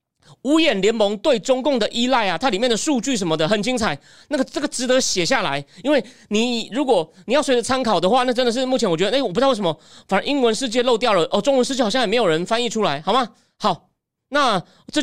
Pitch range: 195-265 Hz